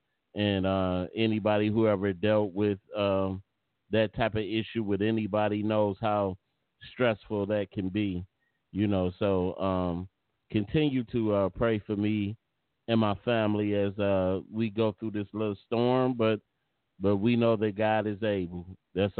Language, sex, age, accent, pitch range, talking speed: English, male, 30-49, American, 100-115 Hz, 155 wpm